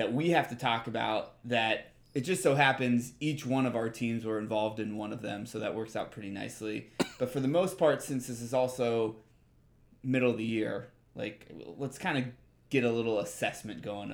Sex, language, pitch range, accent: male, English, 110-125 Hz, American